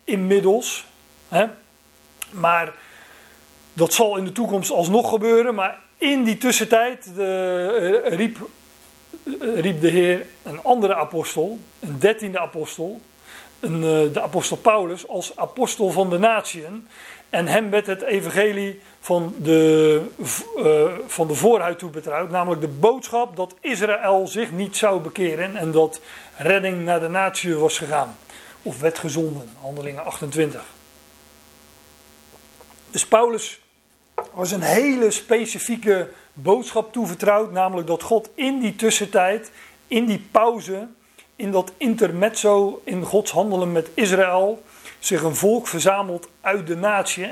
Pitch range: 160-220 Hz